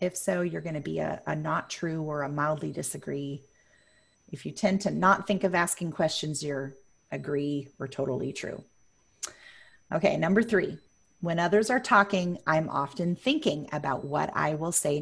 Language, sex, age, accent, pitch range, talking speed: English, female, 30-49, American, 160-210 Hz, 170 wpm